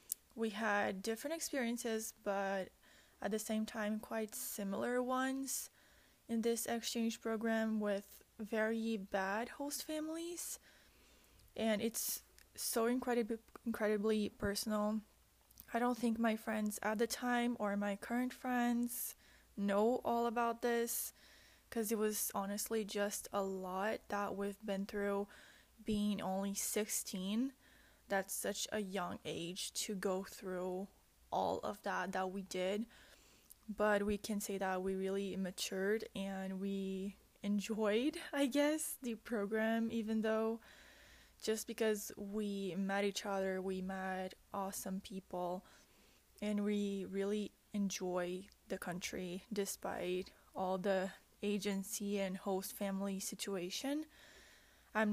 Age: 20-39